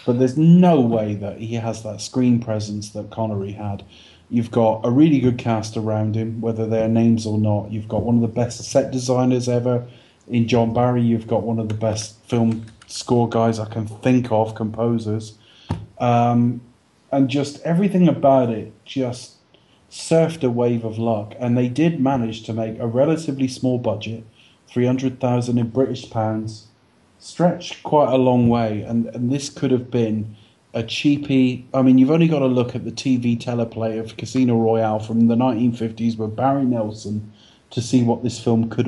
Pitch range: 110-125 Hz